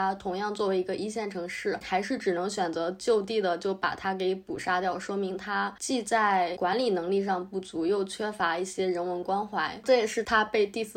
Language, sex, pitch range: Chinese, female, 180-210 Hz